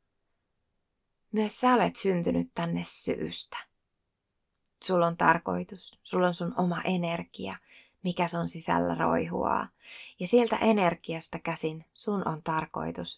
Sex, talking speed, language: female, 115 wpm, Finnish